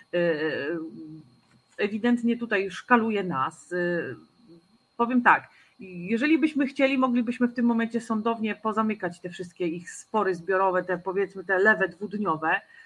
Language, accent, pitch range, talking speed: Polish, native, 195-255 Hz, 120 wpm